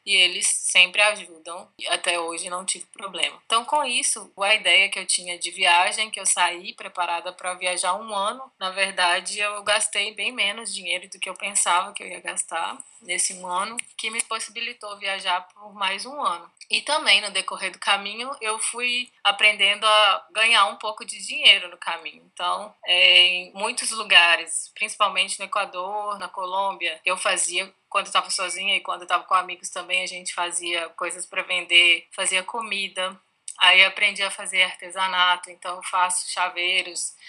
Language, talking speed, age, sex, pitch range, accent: Portuguese, 175 wpm, 20-39, female, 180-205 Hz, Brazilian